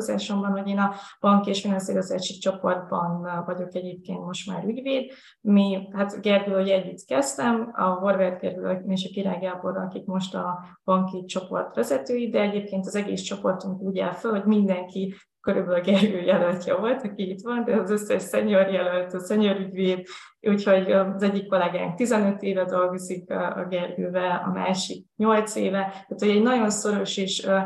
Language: Hungarian